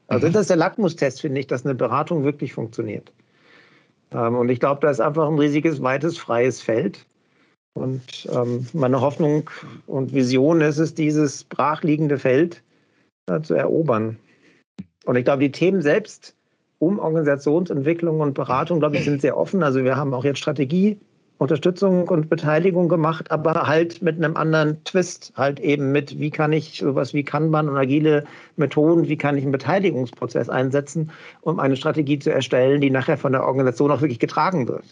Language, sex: German, male